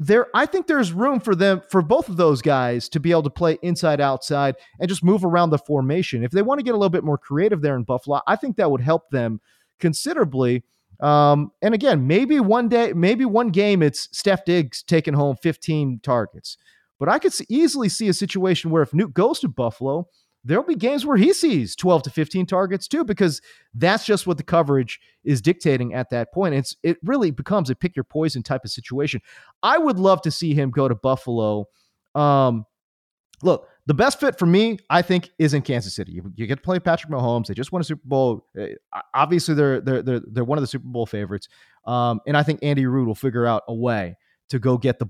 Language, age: English, 30-49